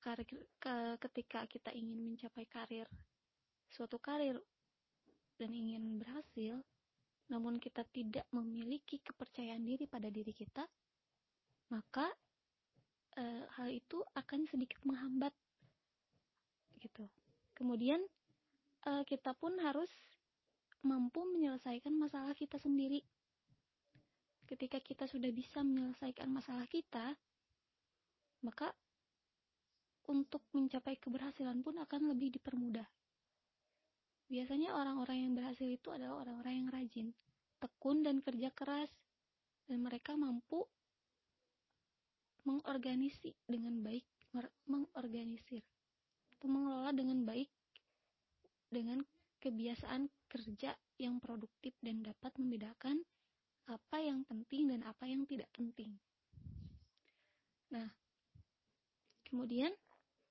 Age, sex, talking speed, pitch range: 20-39, female, 95 wpm, 235-280 Hz